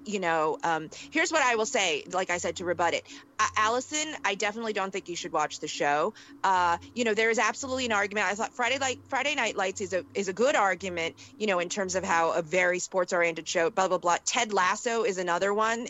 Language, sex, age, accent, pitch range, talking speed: English, female, 30-49, American, 175-240 Hz, 245 wpm